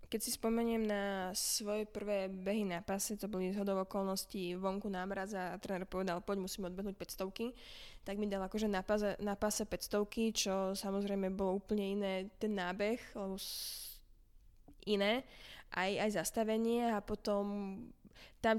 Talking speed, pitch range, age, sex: 140 wpm, 195-220 Hz, 20-39, female